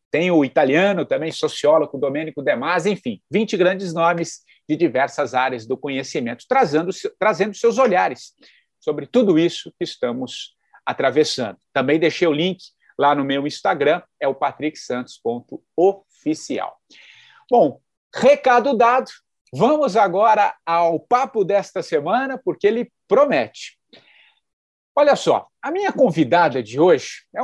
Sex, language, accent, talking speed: male, English, Brazilian, 125 wpm